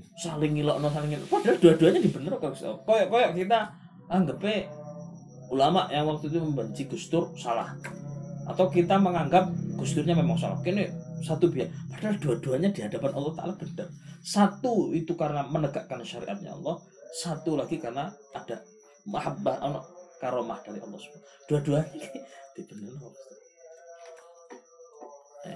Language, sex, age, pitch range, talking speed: Malay, male, 20-39, 125-175 Hz, 130 wpm